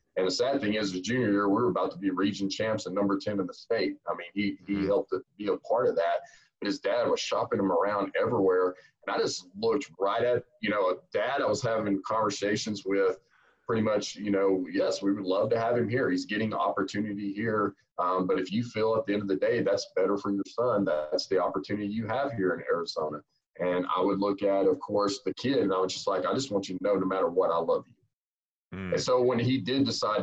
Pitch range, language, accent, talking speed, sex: 100-135 Hz, English, American, 255 wpm, male